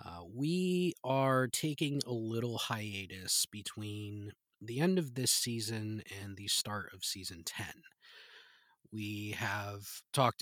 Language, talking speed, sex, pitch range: English, 125 wpm, male, 105-140 Hz